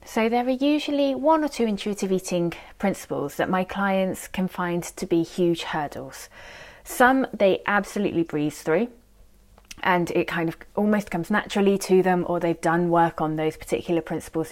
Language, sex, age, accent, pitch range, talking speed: English, female, 20-39, British, 160-200 Hz, 170 wpm